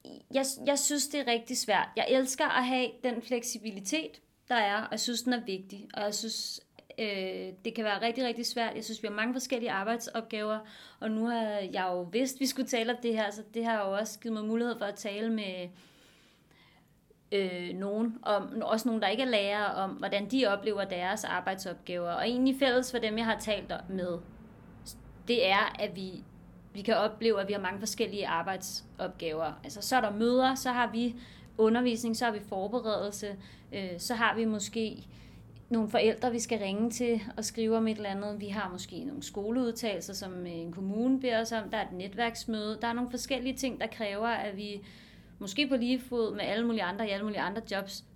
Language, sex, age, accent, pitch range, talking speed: Danish, female, 30-49, native, 200-235 Hz, 210 wpm